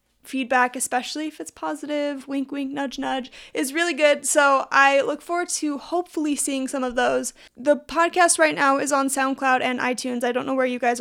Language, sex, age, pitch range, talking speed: English, female, 20-39, 250-295 Hz, 200 wpm